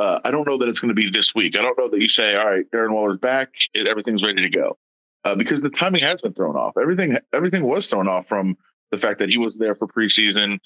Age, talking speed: 20-39, 270 wpm